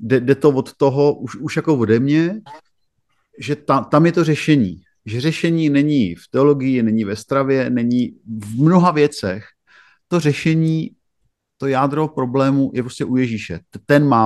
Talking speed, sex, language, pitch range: 160 wpm, male, Czech, 115-145 Hz